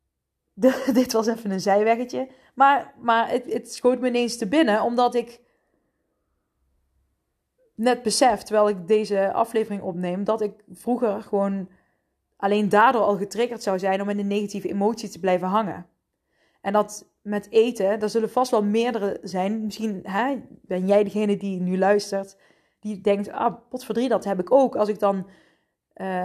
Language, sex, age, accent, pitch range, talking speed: Dutch, female, 20-39, Dutch, 200-245 Hz, 165 wpm